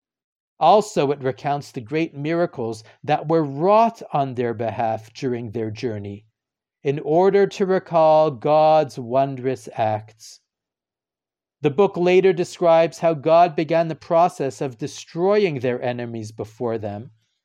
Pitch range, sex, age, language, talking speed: 125-175 Hz, male, 50-69, English, 125 wpm